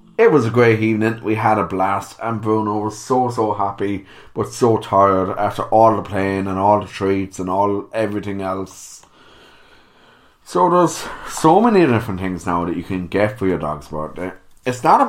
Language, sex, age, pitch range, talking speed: English, male, 30-49, 95-125 Hz, 190 wpm